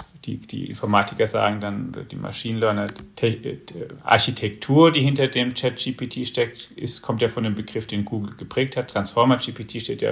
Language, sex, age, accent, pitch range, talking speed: German, male, 40-59, German, 115-130 Hz, 160 wpm